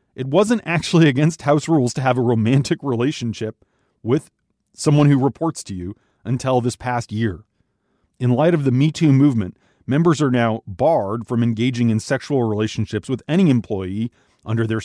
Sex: male